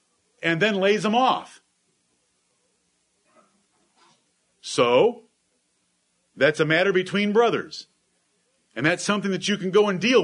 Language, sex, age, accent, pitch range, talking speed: English, male, 50-69, American, 170-225 Hz, 115 wpm